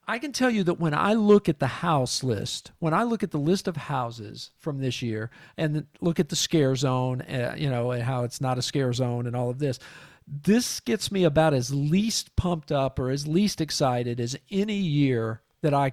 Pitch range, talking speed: 125-160 Hz, 220 wpm